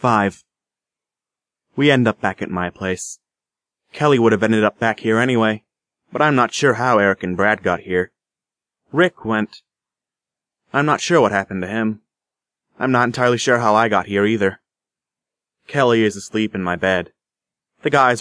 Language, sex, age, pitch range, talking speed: English, male, 30-49, 100-120 Hz, 170 wpm